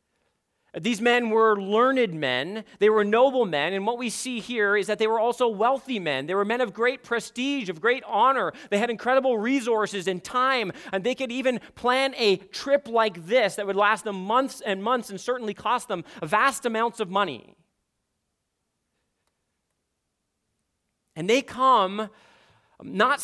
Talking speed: 165 wpm